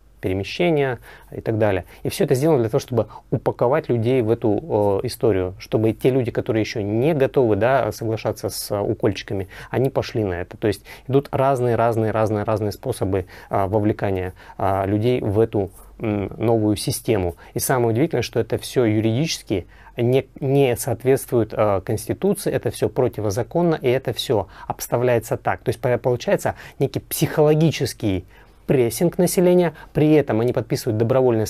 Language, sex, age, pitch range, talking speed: Russian, male, 30-49, 110-140 Hz, 150 wpm